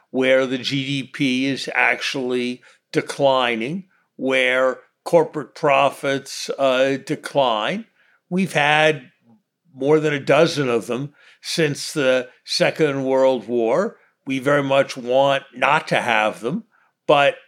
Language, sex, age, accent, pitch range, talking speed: English, male, 50-69, American, 130-160 Hz, 115 wpm